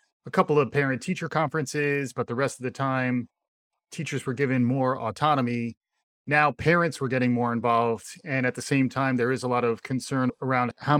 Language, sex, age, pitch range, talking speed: English, male, 30-49, 125-145 Hz, 190 wpm